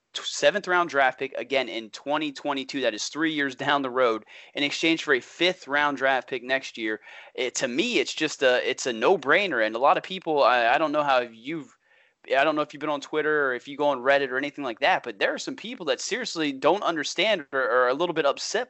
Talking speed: 250 wpm